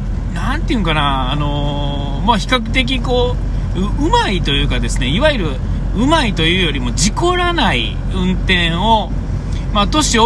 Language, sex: Japanese, male